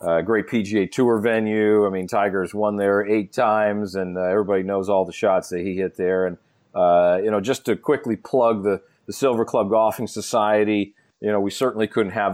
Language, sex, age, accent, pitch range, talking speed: English, male, 40-59, American, 95-115 Hz, 215 wpm